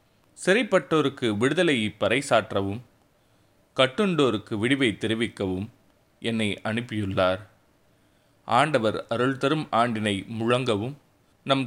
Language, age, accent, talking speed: Tamil, 30-49, native, 70 wpm